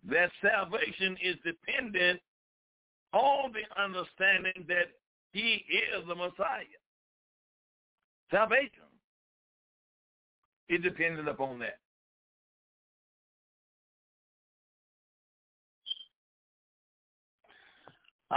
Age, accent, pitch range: 60-79, American, 175-280 Hz